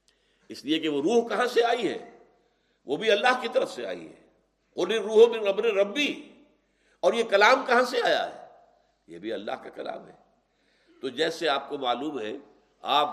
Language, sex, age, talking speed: Urdu, male, 60-79, 185 wpm